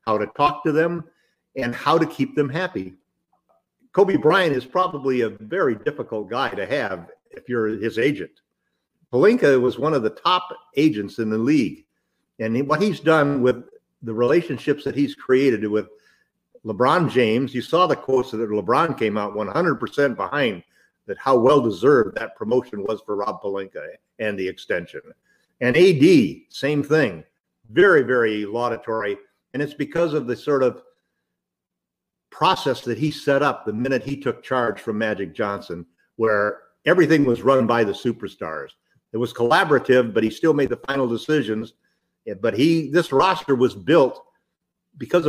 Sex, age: male, 50-69